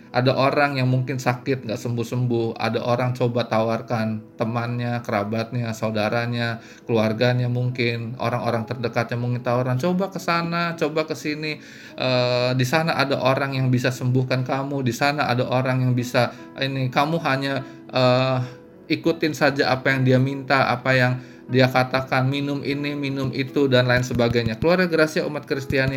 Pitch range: 115-140 Hz